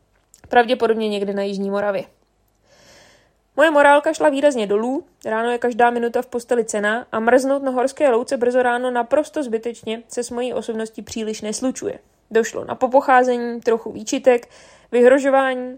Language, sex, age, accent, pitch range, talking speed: Czech, female, 20-39, native, 220-260 Hz, 145 wpm